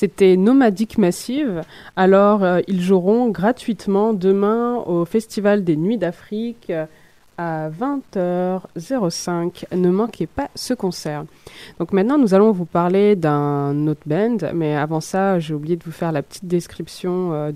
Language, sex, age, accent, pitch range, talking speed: French, female, 20-39, French, 165-210 Hz, 145 wpm